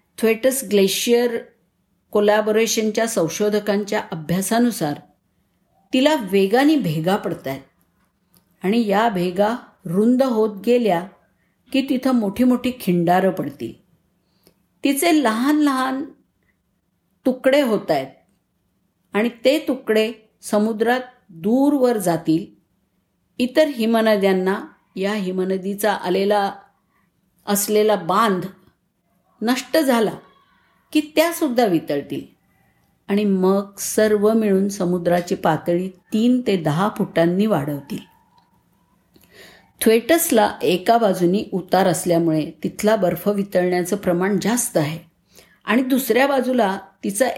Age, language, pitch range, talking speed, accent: 50-69, Marathi, 185-250 Hz, 90 wpm, native